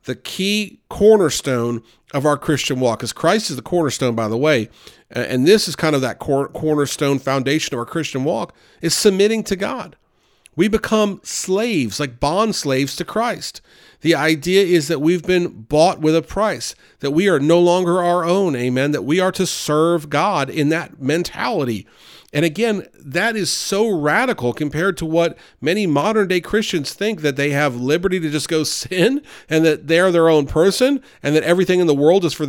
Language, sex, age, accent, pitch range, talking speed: English, male, 40-59, American, 130-170 Hz, 190 wpm